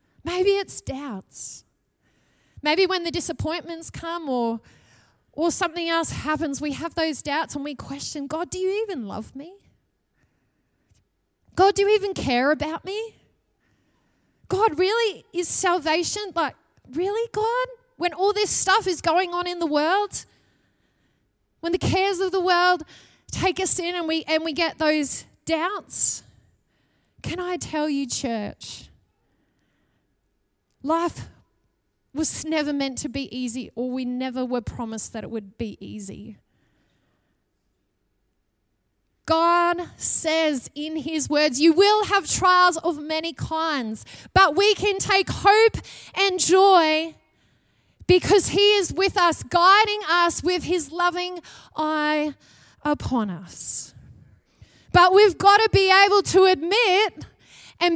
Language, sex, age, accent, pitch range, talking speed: English, female, 20-39, Australian, 285-375 Hz, 135 wpm